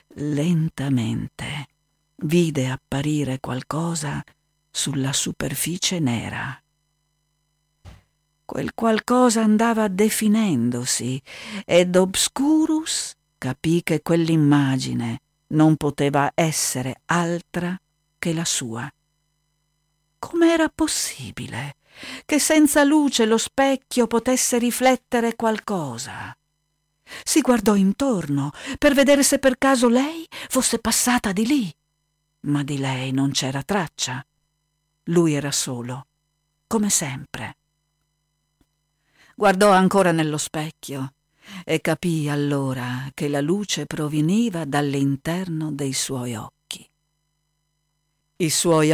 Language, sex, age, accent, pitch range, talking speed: Italian, female, 50-69, native, 145-195 Hz, 90 wpm